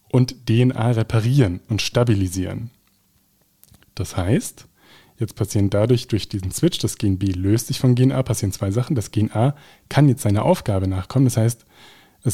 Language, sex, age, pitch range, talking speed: German, male, 20-39, 105-125 Hz, 170 wpm